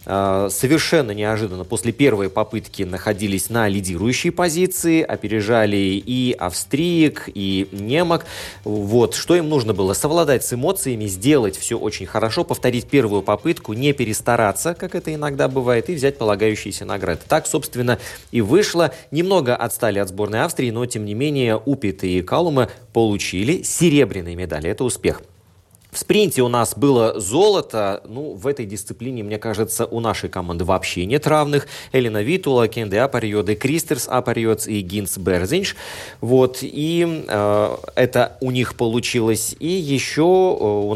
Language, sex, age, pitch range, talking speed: Russian, male, 20-39, 100-135 Hz, 140 wpm